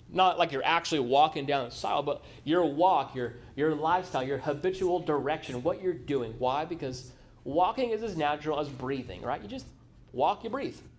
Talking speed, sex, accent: 185 wpm, male, American